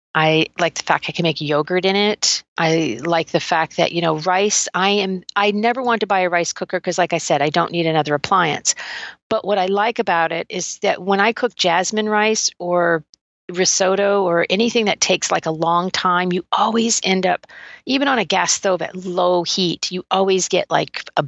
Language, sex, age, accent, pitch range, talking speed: English, female, 40-59, American, 160-195 Hz, 215 wpm